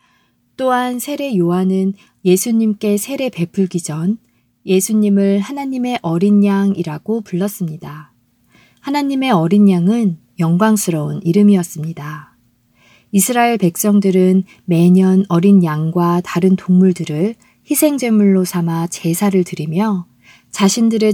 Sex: female